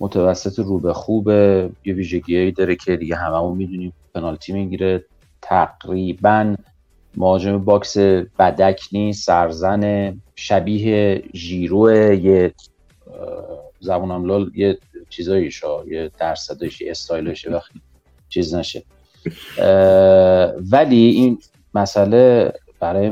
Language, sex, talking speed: Persian, male, 100 wpm